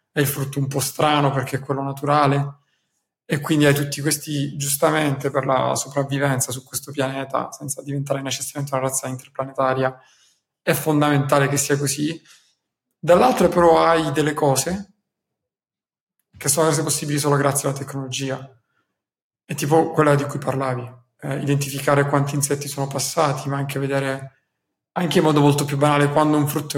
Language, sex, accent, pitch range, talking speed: Italian, male, native, 140-155 Hz, 155 wpm